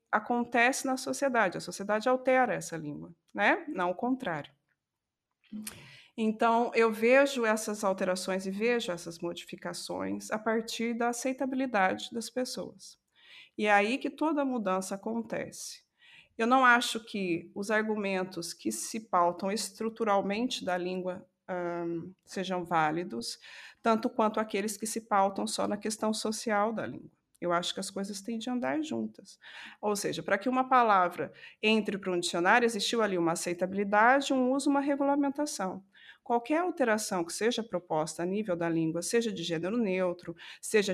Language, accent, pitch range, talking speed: Portuguese, Brazilian, 180-240 Hz, 150 wpm